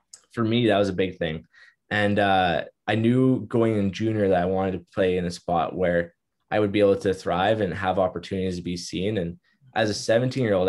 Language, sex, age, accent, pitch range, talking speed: English, male, 20-39, American, 90-105 Hz, 230 wpm